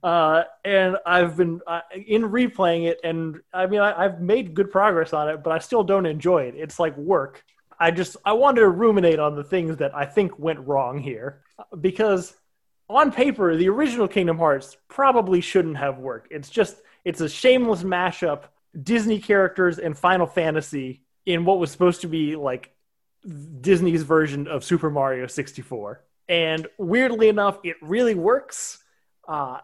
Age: 20-39